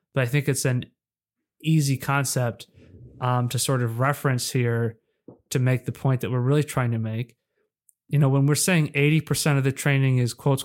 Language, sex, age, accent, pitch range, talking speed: English, male, 30-49, American, 125-150 Hz, 190 wpm